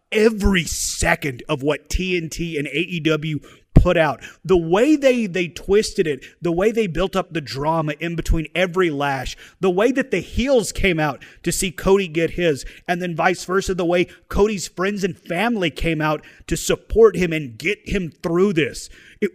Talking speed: 185 wpm